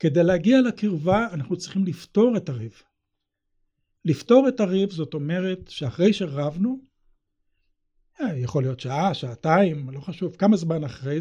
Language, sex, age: Hebrew, male, 60-79